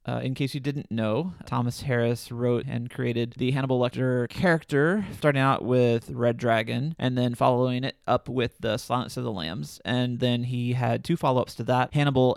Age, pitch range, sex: 30-49, 120-145 Hz, male